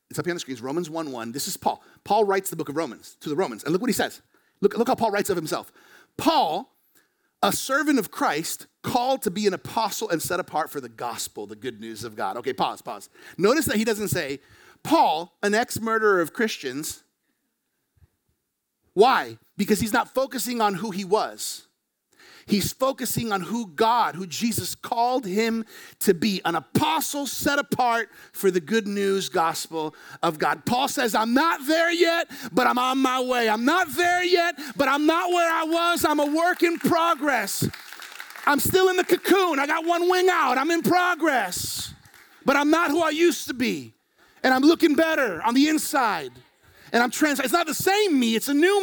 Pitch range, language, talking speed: 205-325 Hz, English, 200 wpm